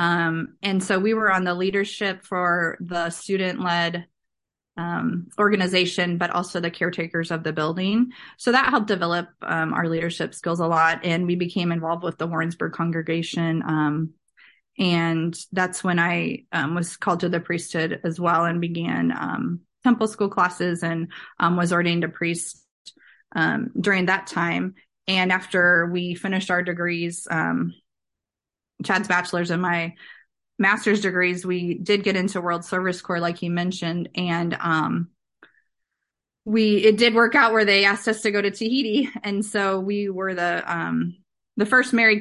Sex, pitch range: female, 170-195 Hz